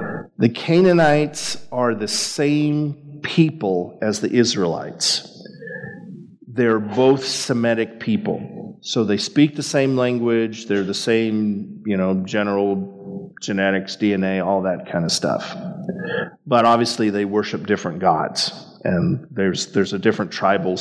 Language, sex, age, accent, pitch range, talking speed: English, male, 50-69, American, 105-150 Hz, 125 wpm